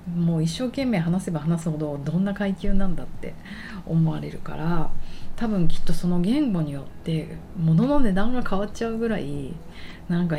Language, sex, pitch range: Japanese, female, 155-190 Hz